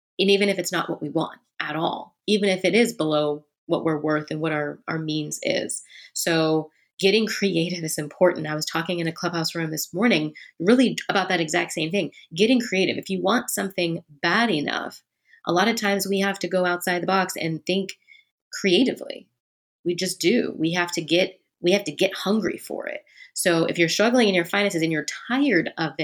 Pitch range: 160-185 Hz